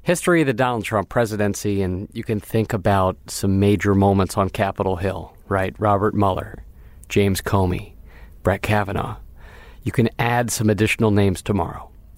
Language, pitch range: English, 95-115 Hz